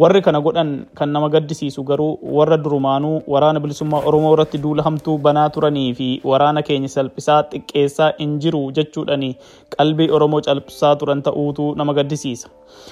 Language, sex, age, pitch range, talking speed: Swedish, male, 20-39, 145-160 Hz, 130 wpm